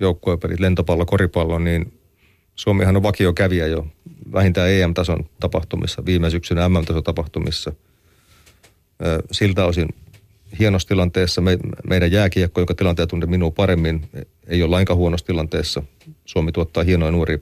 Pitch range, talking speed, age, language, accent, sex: 85-100 Hz, 125 wpm, 30-49, Finnish, native, male